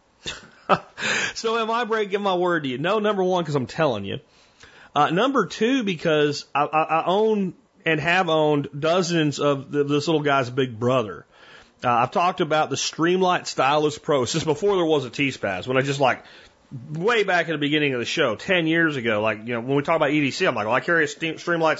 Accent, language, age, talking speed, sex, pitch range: American, English, 40-59, 215 wpm, male, 140-180 Hz